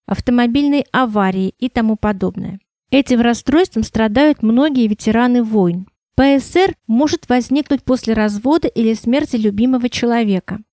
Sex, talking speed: female, 110 wpm